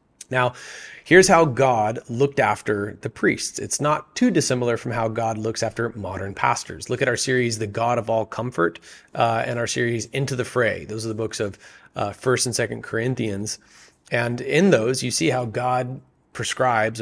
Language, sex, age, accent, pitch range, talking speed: English, male, 30-49, American, 110-135 Hz, 185 wpm